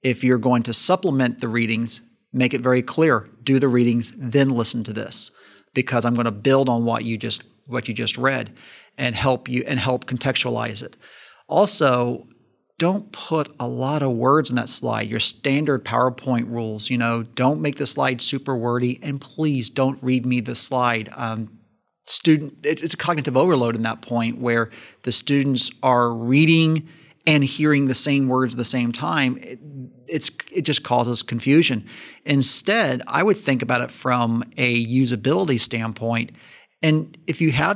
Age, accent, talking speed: 40-59, American, 175 wpm